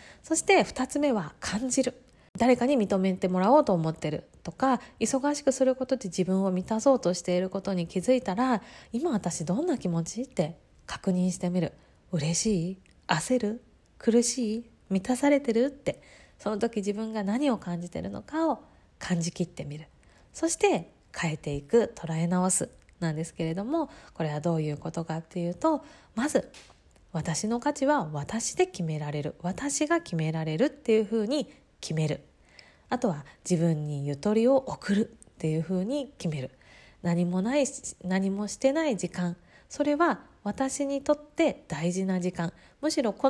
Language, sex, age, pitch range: Japanese, female, 20-39, 175-265 Hz